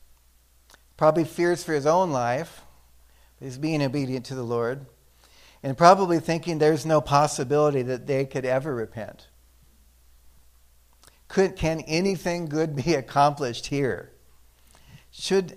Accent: American